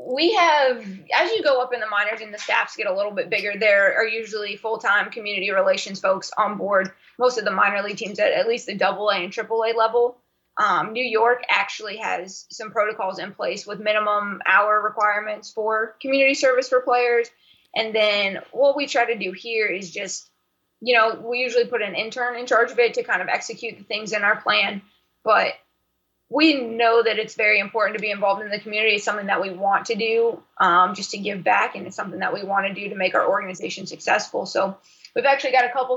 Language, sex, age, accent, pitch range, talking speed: English, female, 20-39, American, 205-245 Hz, 220 wpm